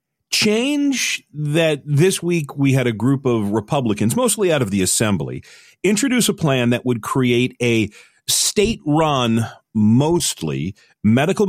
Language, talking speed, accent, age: English, 130 wpm, American, 40-59